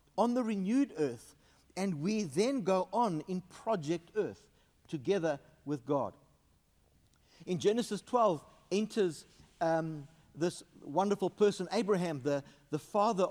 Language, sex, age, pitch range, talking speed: English, male, 60-79, 160-215 Hz, 120 wpm